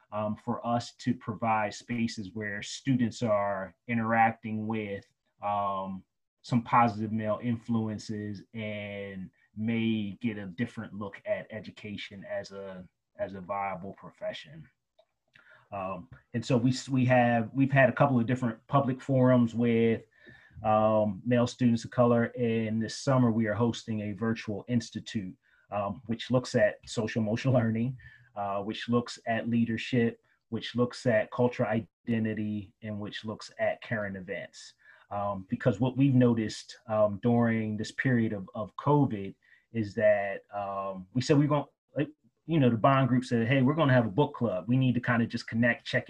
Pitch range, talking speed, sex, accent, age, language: 110-125 Hz, 155 wpm, male, American, 30-49, English